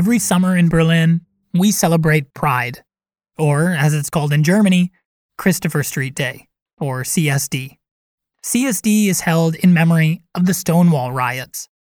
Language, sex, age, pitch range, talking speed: English, male, 20-39, 150-180 Hz, 135 wpm